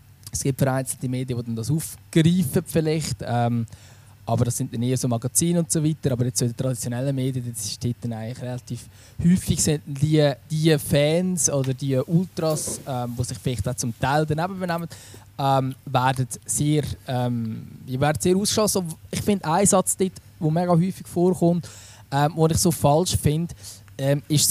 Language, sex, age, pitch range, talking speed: German, male, 20-39, 125-165 Hz, 175 wpm